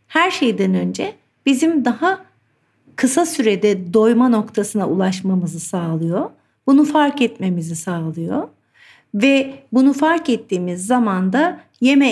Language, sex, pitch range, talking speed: Turkish, female, 190-250 Hz, 110 wpm